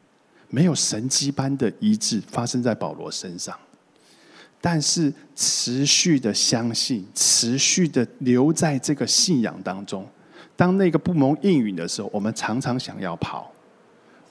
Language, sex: Chinese, male